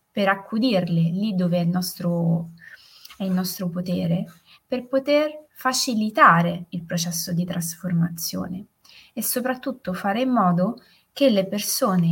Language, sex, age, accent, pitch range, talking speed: Italian, female, 20-39, native, 175-220 Hz, 120 wpm